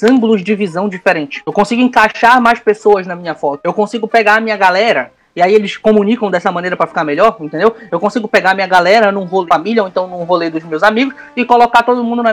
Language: Portuguese